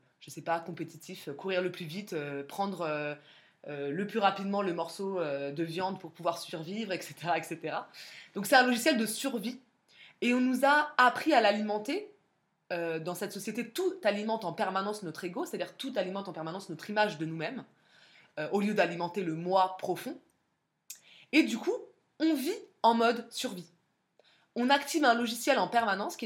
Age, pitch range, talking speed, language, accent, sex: 20-39, 170-235 Hz, 180 wpm, French, French, female